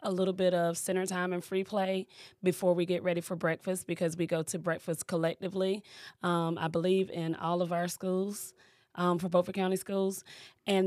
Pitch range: 175-190 Hz